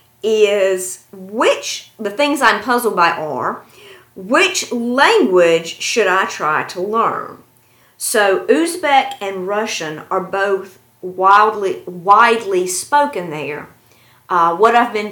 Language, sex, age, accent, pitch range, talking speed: English, female, 40-59, American, 170-220 Hz, 115 wpm